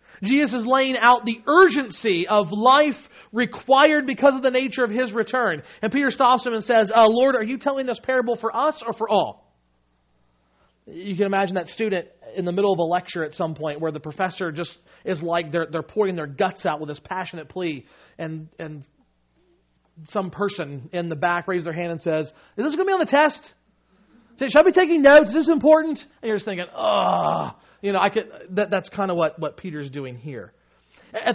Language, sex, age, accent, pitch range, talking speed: English, male, 40-59, American, 180-255 Hz, 210 wpm